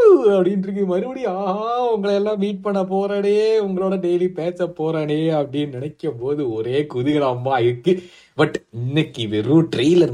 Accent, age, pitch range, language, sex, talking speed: native, 20-39, 120-180 Hz, Tamil, male, 120 wpm